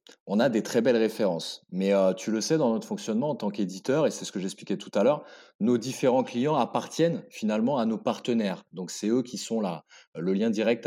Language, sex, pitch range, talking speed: French, male, 110-150 Hz, 230 wpm